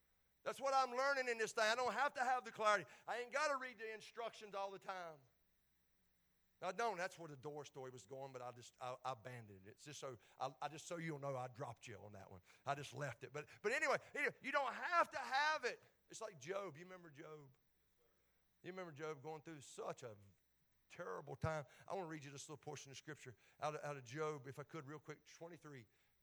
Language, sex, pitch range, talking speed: English, male, 135-180 Hz, 240 wpm